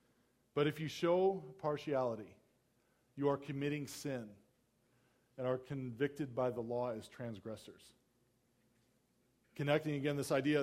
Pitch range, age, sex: 120-145 Hz, 40-59, male